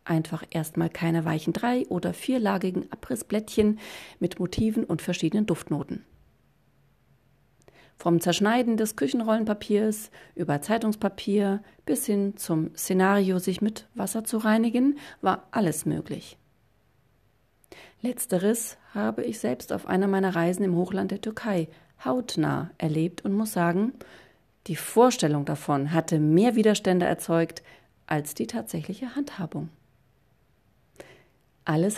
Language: German